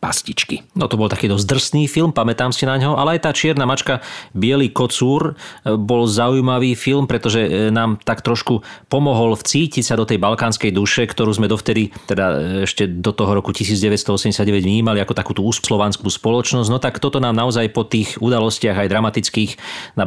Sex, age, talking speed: male, 40-59, 175 wpm